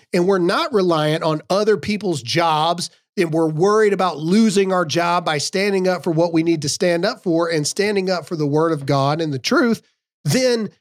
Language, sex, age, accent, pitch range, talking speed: English, male, 40-59, American, 160-215 Hz, 210 wpm